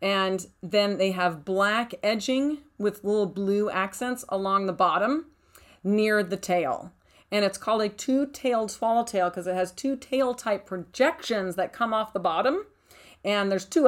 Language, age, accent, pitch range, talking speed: English, 40-59, American, 185-235 Hz, 160 wpm